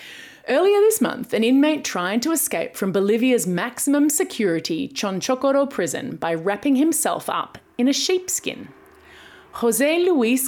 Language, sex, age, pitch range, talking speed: English, female, 30-49, 210-325 Hz, 130 wpm